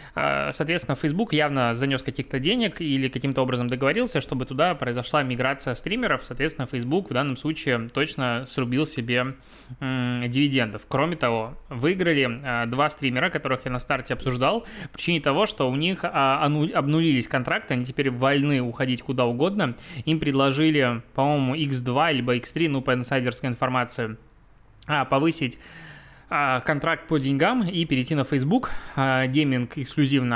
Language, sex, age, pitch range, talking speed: Russian, male, 20-39, 125-155 Hz, 135 wpm